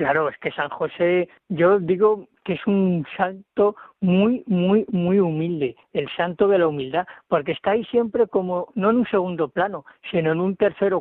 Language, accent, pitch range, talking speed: Spanish, Spanish, 160-190 Hz, 185 wpm